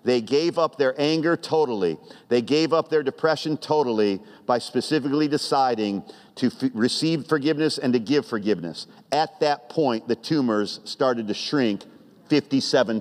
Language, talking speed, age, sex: English, 145 wpm, 50-69, male